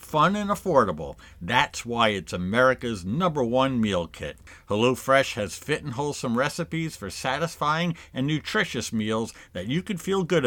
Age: 50-69